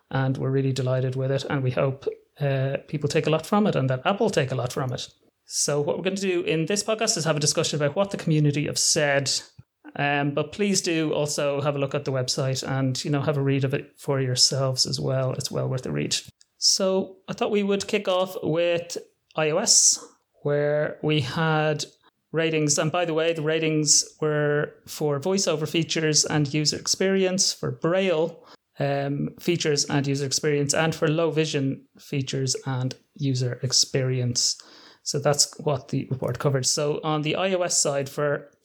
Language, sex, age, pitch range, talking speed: English, male, 30-49, 140-165 Hz, 195 wpm